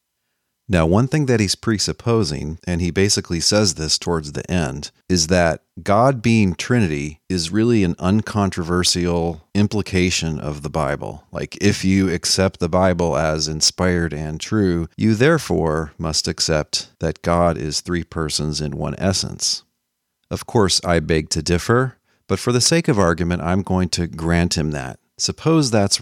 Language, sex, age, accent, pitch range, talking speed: English, male, 40-59, American, 80-100 Hz, 160 wpm